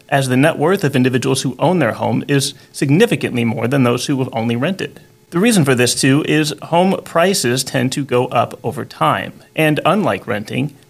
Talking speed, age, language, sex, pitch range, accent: 200 wpm, 30-49, English, male, 130-175 Hz, American